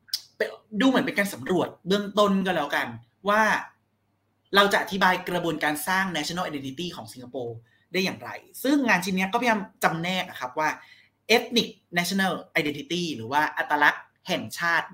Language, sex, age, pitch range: Thai, male, 30-49, 145-190 Hz